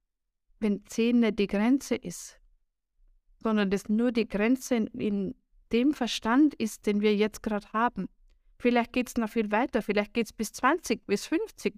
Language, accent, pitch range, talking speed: German, German, 210-250 Hz, 170 wpm